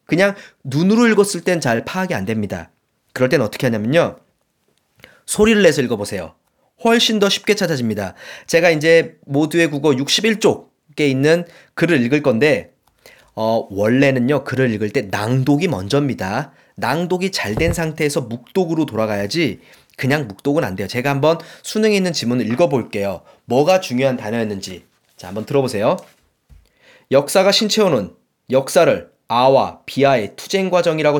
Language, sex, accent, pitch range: Korean, male, native, 130-185 Hz